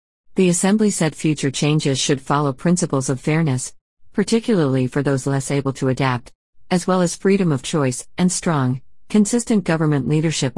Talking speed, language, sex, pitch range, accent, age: 160 wpm, English, female, 135-160 Hz, American, 50-69